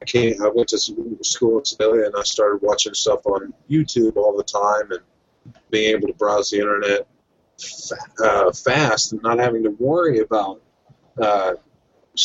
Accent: American